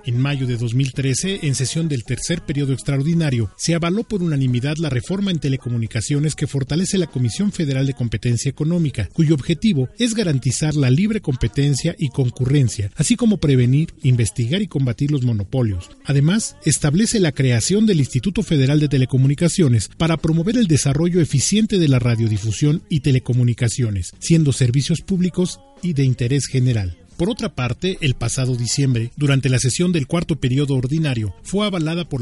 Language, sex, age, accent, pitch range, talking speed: Spanish, male, 40-59, Mexican, 125-165 Hz, 160 wpm